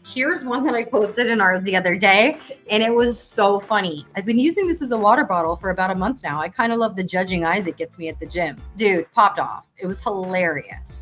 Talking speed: 255 wpm